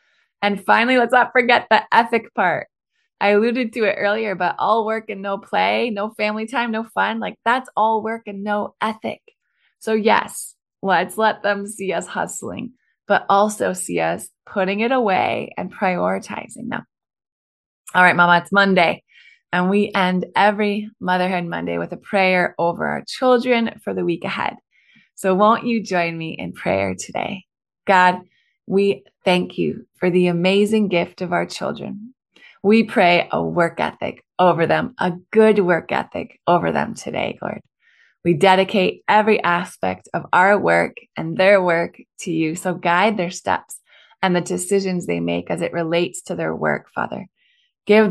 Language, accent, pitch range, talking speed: English, American, 175-220 Hz, 165 wpm